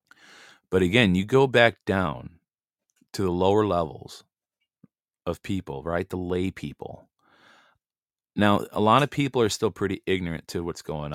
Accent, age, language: American, 30-49, English